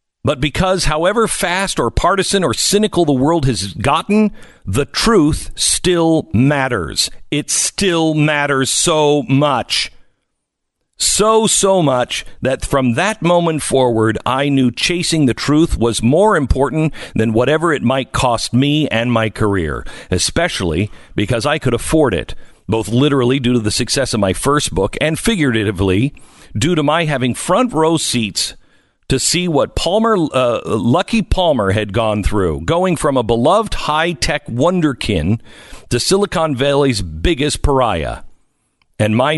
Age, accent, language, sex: 50-69, American, English, male